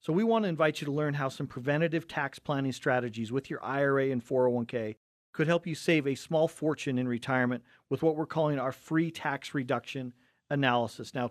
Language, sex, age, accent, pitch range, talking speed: English, male, 40-59, American, 130-160 Hz, 200 wpm